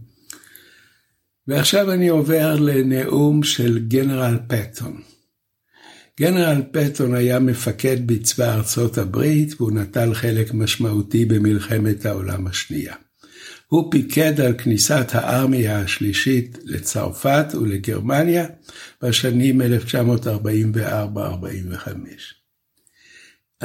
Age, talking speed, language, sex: 60-79, 80 wpm, Hebrew, male